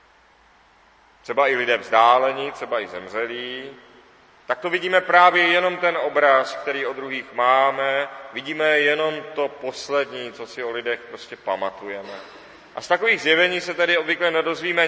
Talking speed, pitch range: 145 wpm, 130-170 Hz